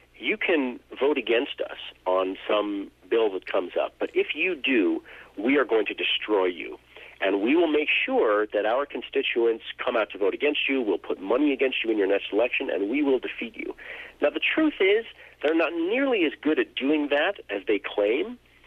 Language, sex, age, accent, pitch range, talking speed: English, male, 50-69, American, 310-445 Hz, 205 wpm